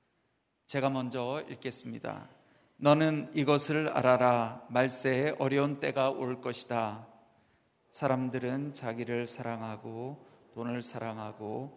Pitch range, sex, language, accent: 115-130 Hz, male, Korean, native